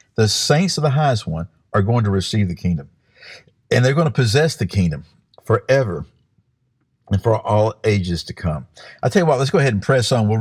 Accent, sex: American, male